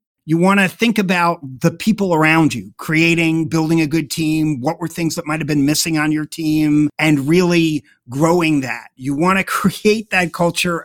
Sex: male